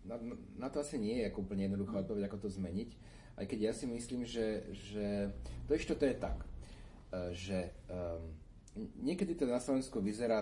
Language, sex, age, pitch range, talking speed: Slovak, male, 40-59, 95-120 Hz, 165 wpm